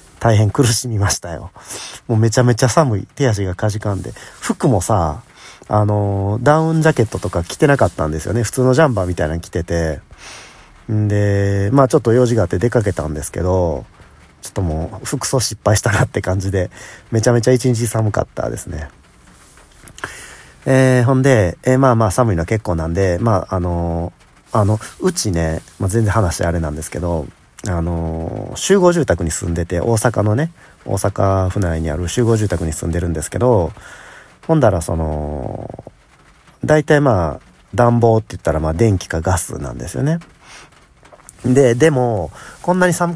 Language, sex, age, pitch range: Japanese, male, 40-59, 85-125 Hz